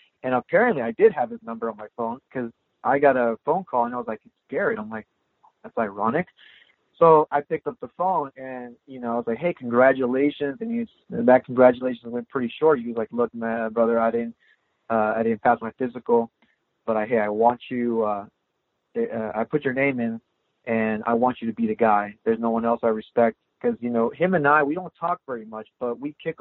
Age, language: 30-49, English